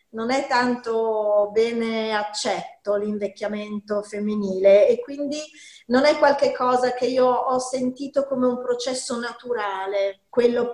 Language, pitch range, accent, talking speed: Italian, 225-280 Hz, native, 125 wpm